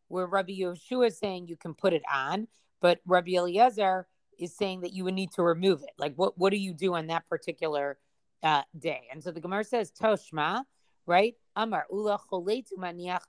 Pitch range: 170-205 Hz